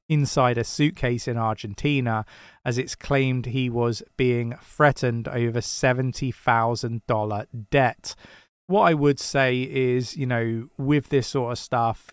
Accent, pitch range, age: British, 115-135 Hz, 30-49